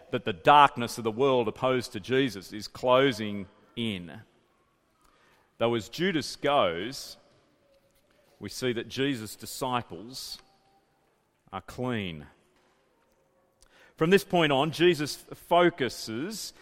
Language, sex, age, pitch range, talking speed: English, male, 40-59, 130-190 Hz, 105 wpm